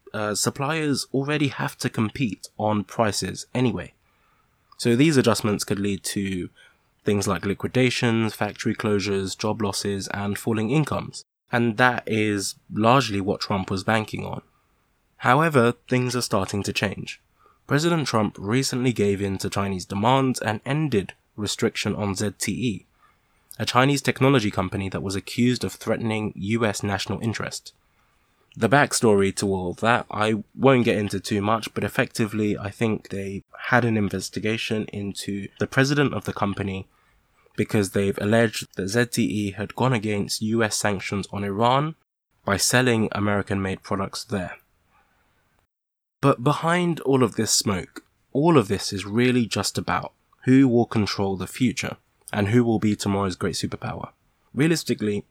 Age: 20-39